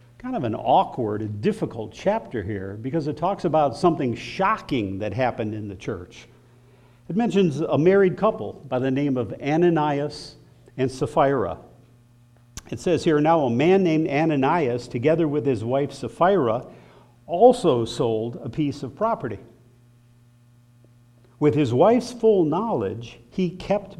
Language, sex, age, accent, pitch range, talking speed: English, male, 50-69, American, 120-155 Hz, 140 wpm